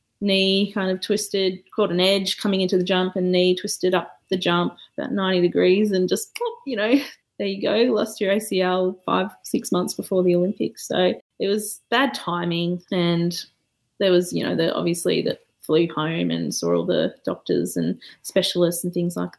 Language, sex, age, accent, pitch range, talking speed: English, female, 20-39, Australian, 170-195 Hz, 190 wpm